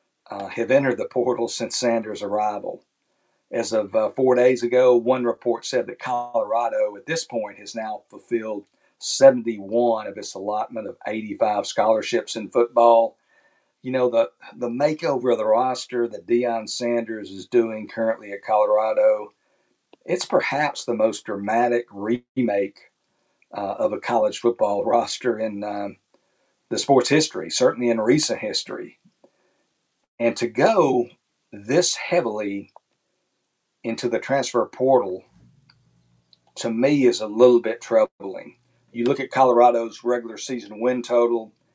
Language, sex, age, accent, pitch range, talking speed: English, male, 50-69, American, 115-125 Hz, 135 wpm